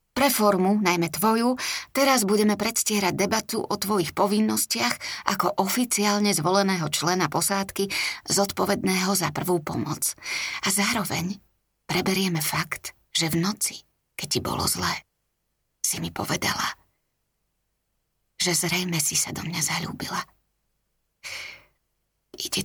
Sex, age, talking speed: female, 30-49, 110 wpm